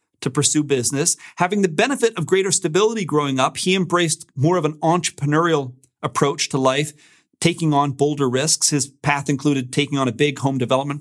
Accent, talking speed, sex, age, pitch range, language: American, 180 wpm, male, 40-59, 135-170 Hz, English